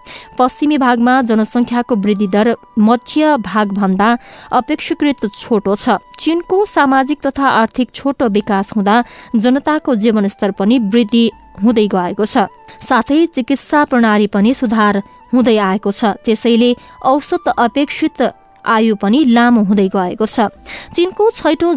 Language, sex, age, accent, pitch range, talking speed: English, female, 20-39, Indian, 215-275 Hz, 125 wpm